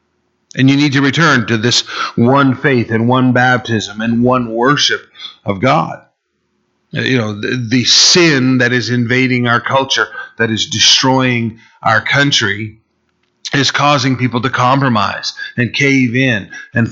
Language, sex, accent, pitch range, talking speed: English, male, American, 115-130 Hz, 145 wpm